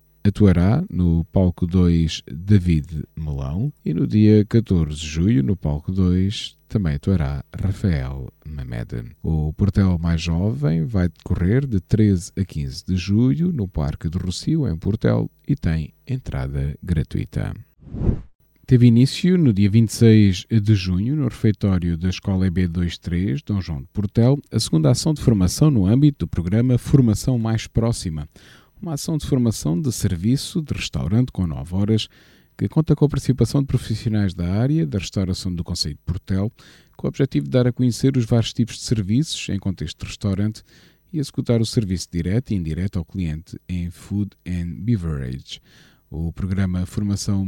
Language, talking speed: Portuguese, 160 wpm